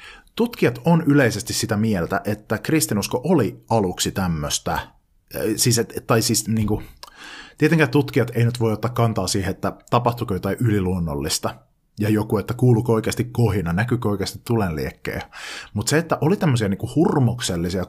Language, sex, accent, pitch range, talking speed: Finnish, male, native, 100-130 Hz, 145 wpm